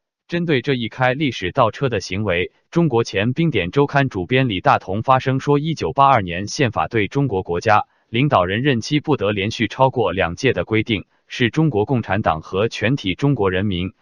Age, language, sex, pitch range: 20-39, Chinese, male, 100-135 Hz